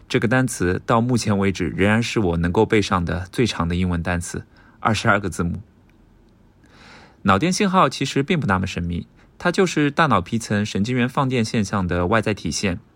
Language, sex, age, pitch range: Chinese, male, 20-39, 90-125 Hz